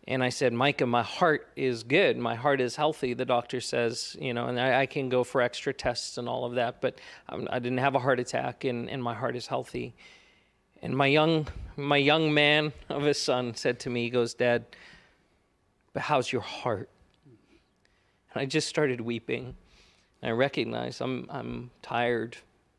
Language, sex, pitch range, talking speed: English, male, 120-140 Hz, 190 wpm